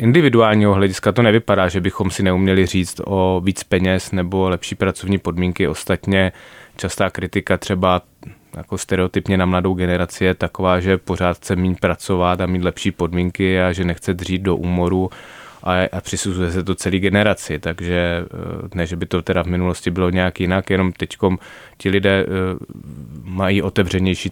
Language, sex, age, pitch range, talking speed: Czech, male, 20-39, 90-100 Hz, 165 wpm